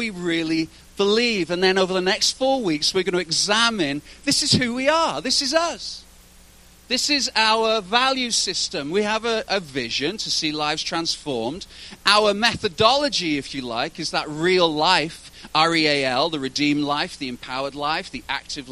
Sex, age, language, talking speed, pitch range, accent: male, 40-59, English, 175 wpm, 150-210 Hz, British